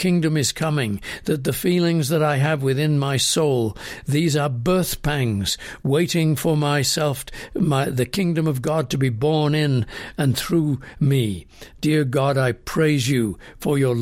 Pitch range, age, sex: 130-165 Hz, 60-79, male